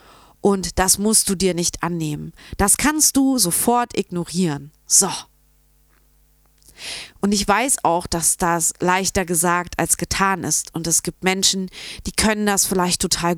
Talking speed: 150 wpm